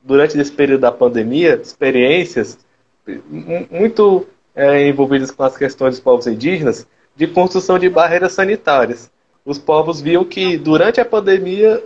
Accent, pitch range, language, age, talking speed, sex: Brazilian, 135-185 Hz, Portuguese, 20-39, 135 wpm, male